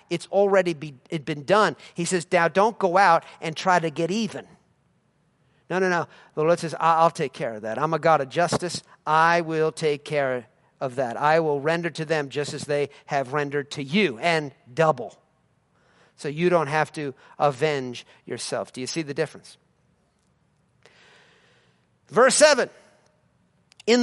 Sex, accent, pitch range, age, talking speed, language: male, American, 150-230 Hz, 50-69, 165 wpm, English